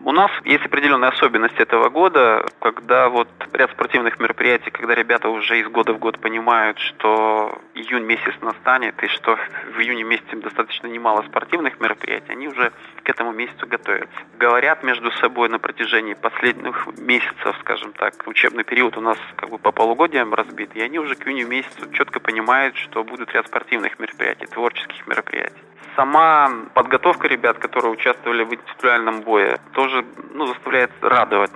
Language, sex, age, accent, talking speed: Russian, male, 20-39, native, 160 wpm